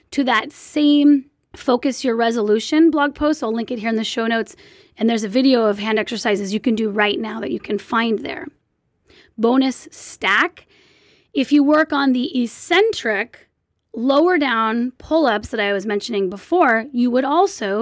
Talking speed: 175 wpm